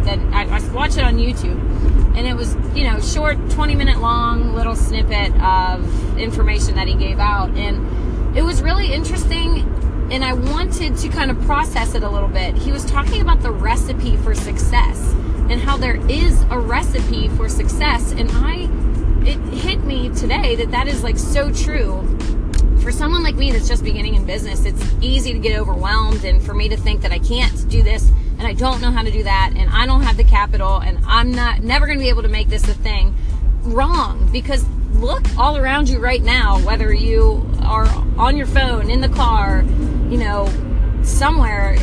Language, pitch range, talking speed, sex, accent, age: English, 75-100 Hz, 200 wpm, female, American, 20-39